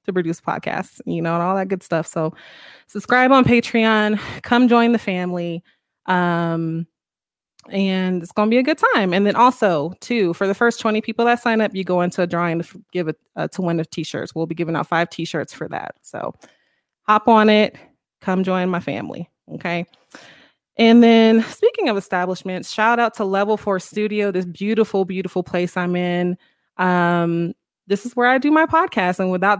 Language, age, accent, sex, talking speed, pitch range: English, 20-39, American, female, 195 wpm, 175-210 Hz